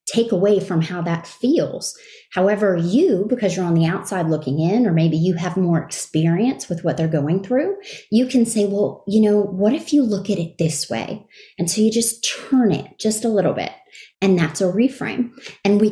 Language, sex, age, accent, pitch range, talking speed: English, female, 30-49, American, 165-220 Hz, 210 wpm